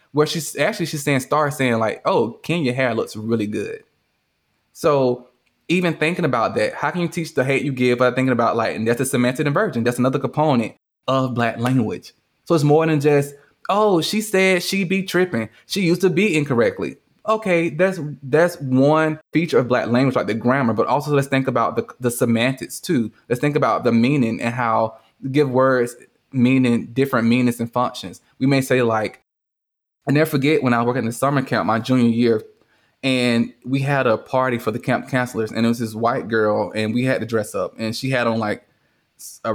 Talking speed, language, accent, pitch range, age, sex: 210 wpm, English, American, 115-150 Hz, 20-39, male